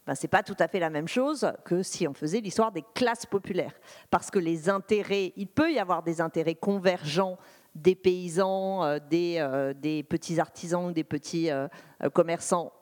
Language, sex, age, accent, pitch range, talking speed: French, female, 40-59, French, 165-215 Hz, 185 wpm